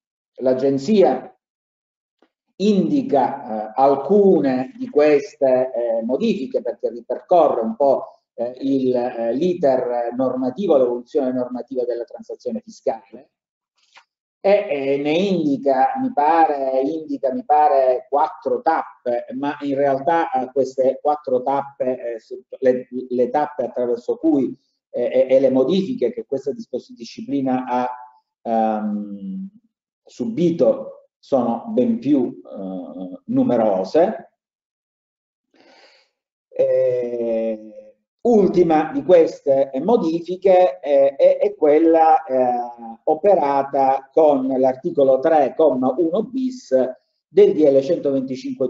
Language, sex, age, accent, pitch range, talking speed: Italian, male, 40-59, native, 125-195 Hz, 100 wpm